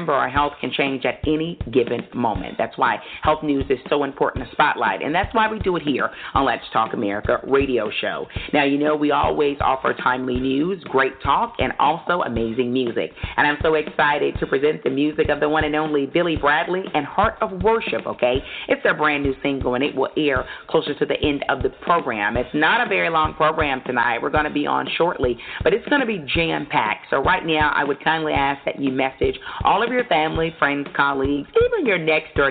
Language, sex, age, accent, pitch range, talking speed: English, female, 40-59, American, 140-180 Hz, 220 wpm